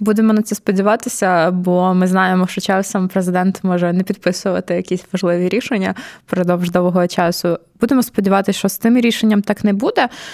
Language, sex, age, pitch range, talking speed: Ukrainian, female, 20-39, 180-200 Hz, 165 wpm